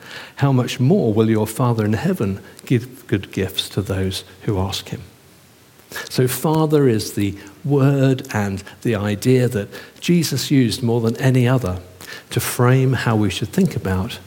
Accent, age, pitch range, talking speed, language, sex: British, 50-69, 100-130 Hz, 160 wpm, English, male